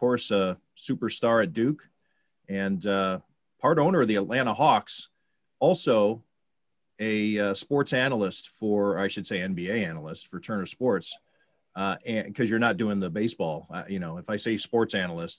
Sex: male